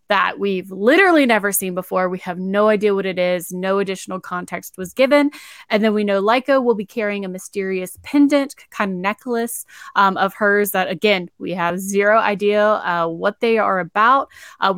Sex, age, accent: female, 10-29, American